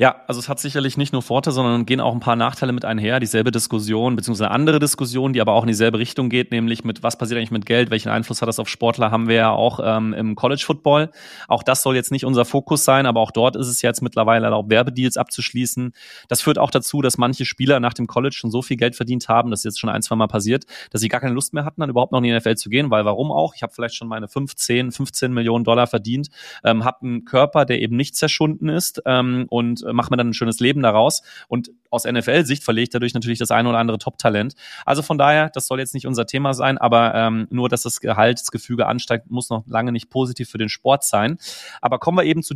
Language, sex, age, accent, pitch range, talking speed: German, male, 30-49, German, 115-135 Hz, 255 wpm